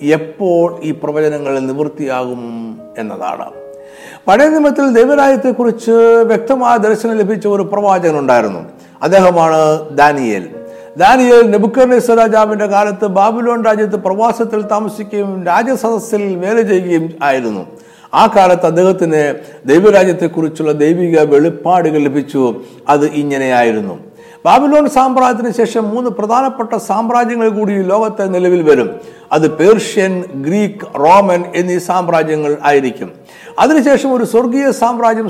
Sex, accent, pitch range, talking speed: male, native, 155-220 Hz, 95 wpm